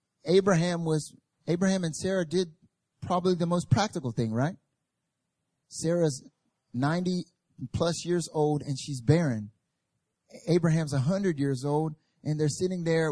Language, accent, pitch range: English, American, 135-165 Hz